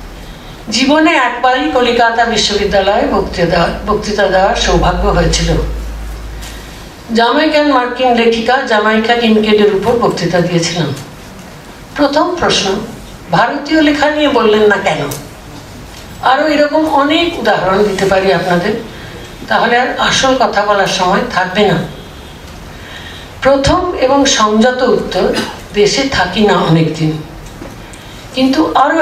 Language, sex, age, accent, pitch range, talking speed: Bengali, female, 60-79, native, 195-275 Hz, 70 wpm